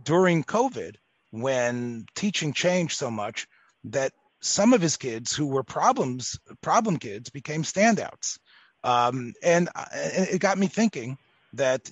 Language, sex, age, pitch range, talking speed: English, male, 40-59, 140-185 Hz, 135 wpm